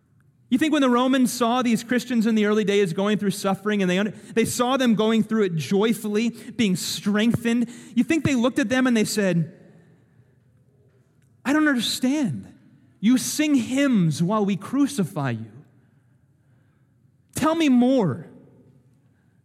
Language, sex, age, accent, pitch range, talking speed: English, male, 30-49, American, 140-235 Hz, 150 wpm